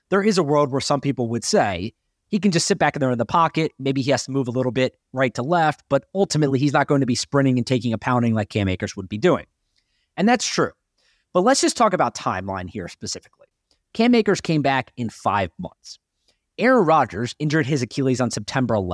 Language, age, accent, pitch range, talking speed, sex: English, 30-49, American, 115-160 Hz, 230 wpm, male